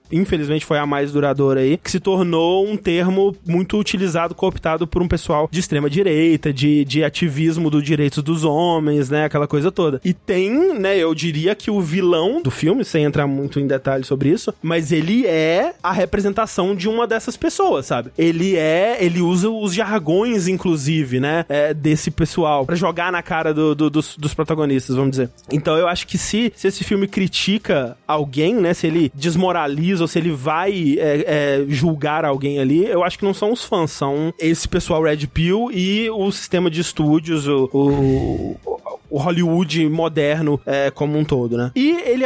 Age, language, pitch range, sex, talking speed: 20-39, Portuguese, 150-185 Hz, male, 180 wpm